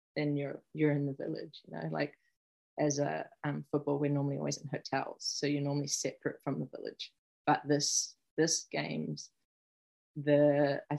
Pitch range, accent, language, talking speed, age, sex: 145-155 Hz, Australian, English, 170 wpm, 20-39, female